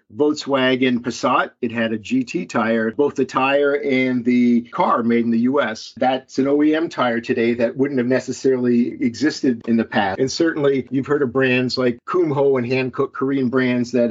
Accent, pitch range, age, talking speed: American, 120-140 Hz, 50-69, 185 wpm